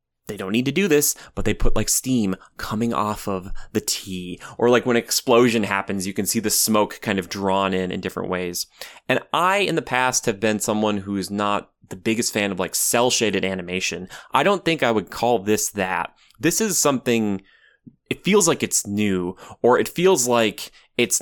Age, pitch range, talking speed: 20-39, 95-120 Hz, 205 wpm